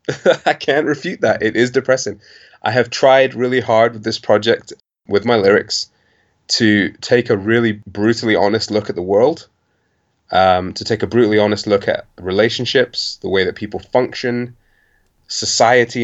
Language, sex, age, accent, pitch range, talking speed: English, male, 20-39, British, 95-115 Hz, 160 wpm